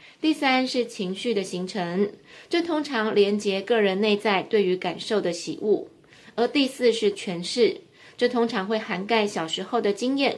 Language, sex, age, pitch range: Chinese, female, 20-39, 195-240 Hz